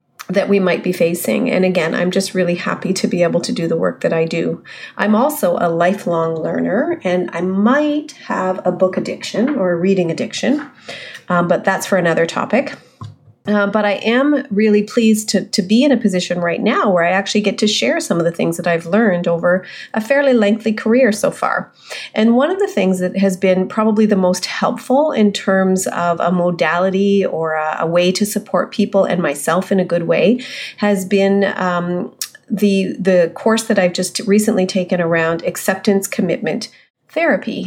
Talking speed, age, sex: 195 wpm, 30-49, female